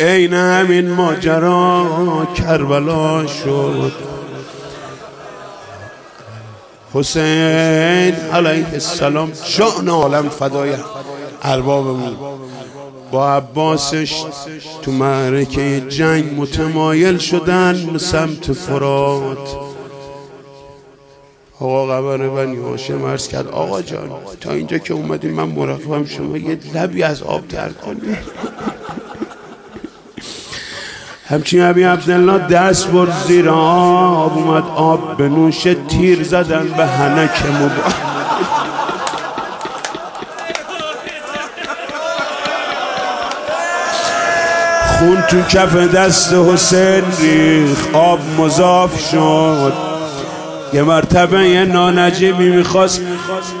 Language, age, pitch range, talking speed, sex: Persian, 50-69, 140-180 Hz, 80 wpm, male